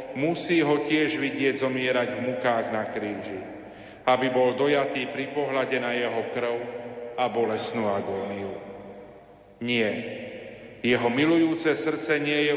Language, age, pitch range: Slovak, 40-59, 130-145 Hz